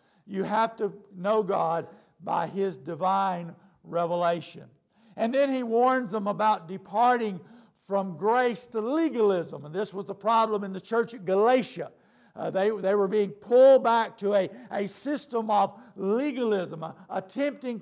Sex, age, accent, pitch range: male, 60-79, American, 195-235 Hz